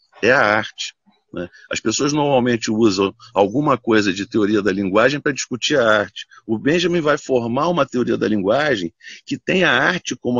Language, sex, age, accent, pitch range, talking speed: Portuguese, male, 50-69, Brazilian, 110-170 Hz, 180 wpm